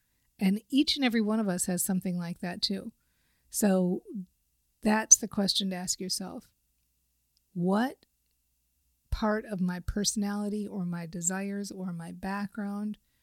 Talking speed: 135 wpm